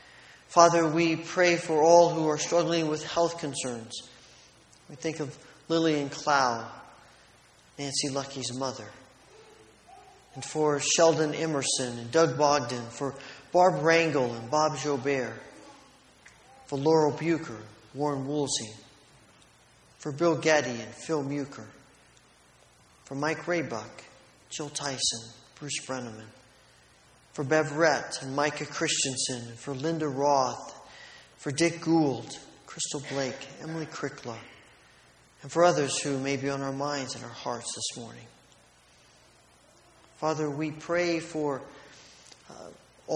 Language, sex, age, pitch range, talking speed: English, male, 40-59, 135-160 Hz, 120 wpm